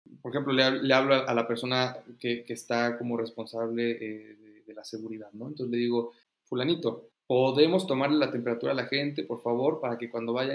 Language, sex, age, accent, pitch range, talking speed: Spanish, male, 30-49, Mexican, 115-145 Hz, 210 wpm